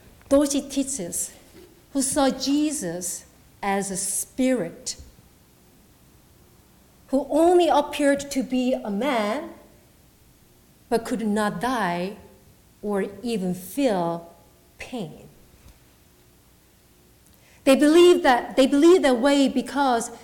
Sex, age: female, 50-69